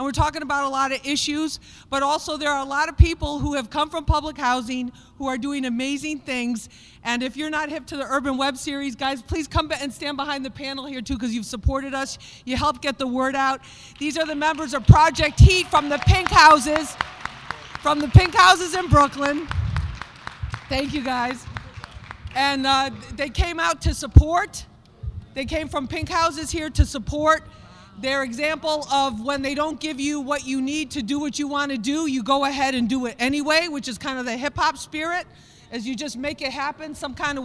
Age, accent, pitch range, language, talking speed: 40-59, American, 255-295 Hz, English, 215 wpm